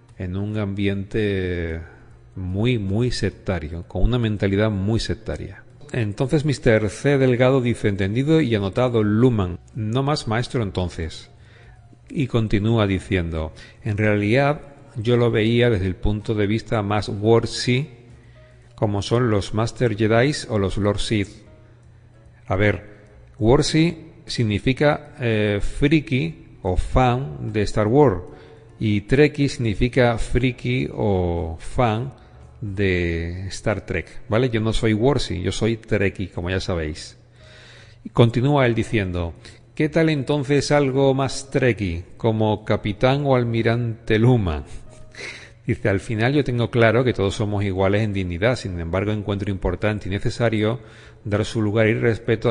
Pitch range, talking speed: 100-125 Hz, 135 wpm